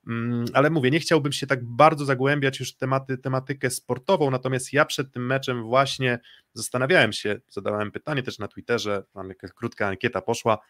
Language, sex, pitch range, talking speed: Polish, male, 120-135 Hz, 175 wpm